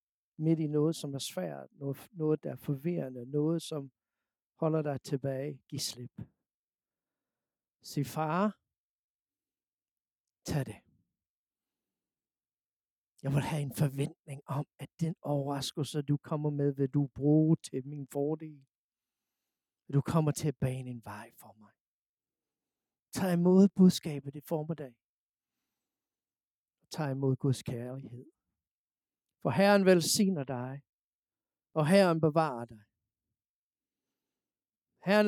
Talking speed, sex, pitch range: 115 wpm, male, 125-165 Hz